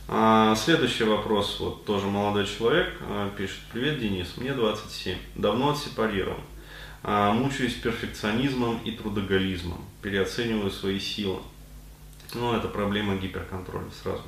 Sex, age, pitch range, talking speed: male, 20-39, 95-115 Hz, 105 wpm